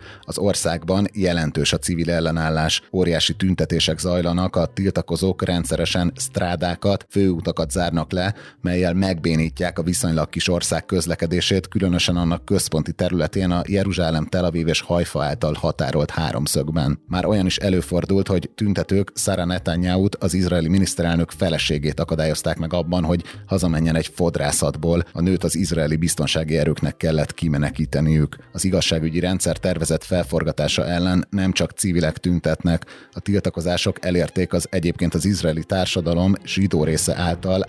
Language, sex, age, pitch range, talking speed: Hungarian, male, 30-49, 85-95 Hz, 130 wpm